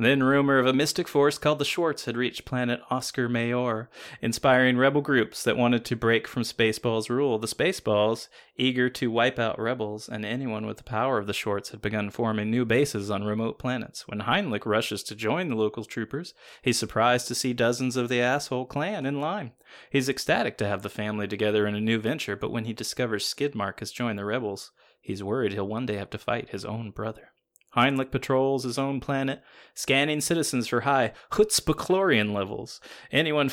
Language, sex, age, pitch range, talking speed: English, male, 20-39, 105-135 Hz, 195 wpm